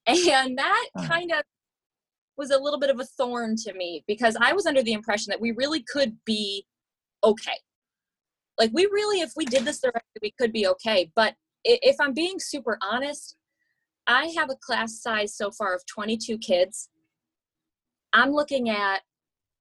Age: 20-39